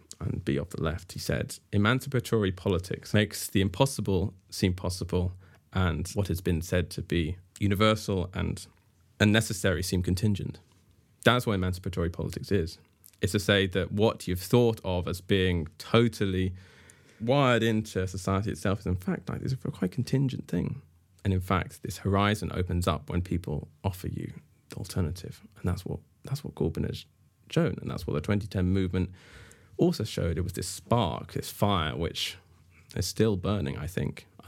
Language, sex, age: English, male, 20-39